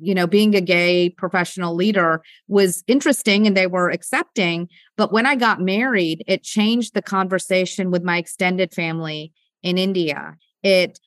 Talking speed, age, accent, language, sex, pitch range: 155 wpm, 40-59, American, English, female, 175-200 Hz